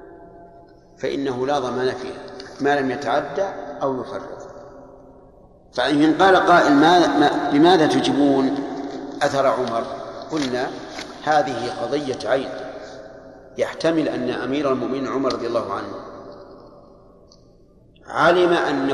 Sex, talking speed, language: male, 100 wpm, Arabic